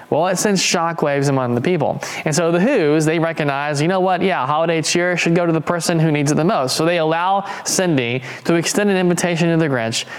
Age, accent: 20-39, American